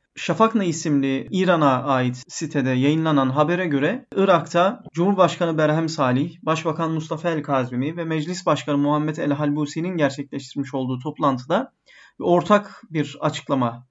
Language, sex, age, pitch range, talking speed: Turkish, male, 30-49, 145-180 Hz, 130 wpm